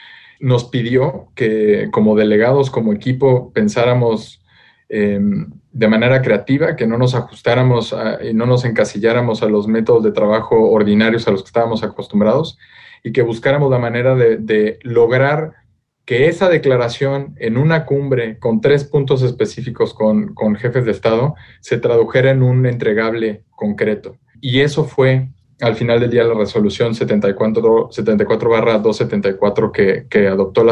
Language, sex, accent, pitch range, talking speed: Spanish, male, Mexican, 110-130 Hz, 150 wpm